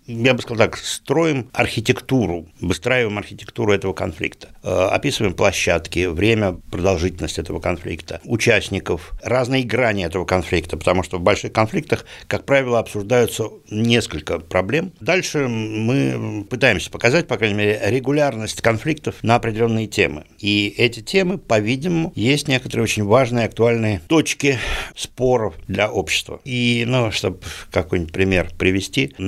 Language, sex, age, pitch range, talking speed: Russian, male, 60-79, 85-115 Hz, 125 wpm